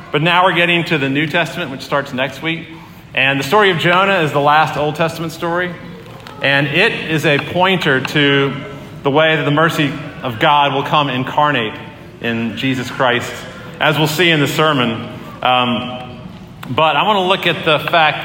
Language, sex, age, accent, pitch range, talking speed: English, male, 40-59, American, 125-165 Hz, 185 wpm